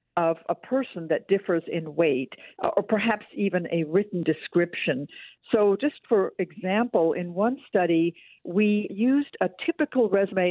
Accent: American